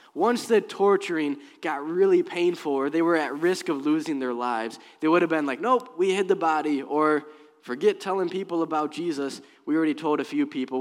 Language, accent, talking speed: English, American, 205 wpm